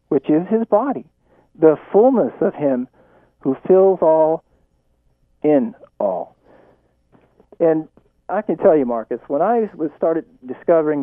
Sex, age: male, 50-69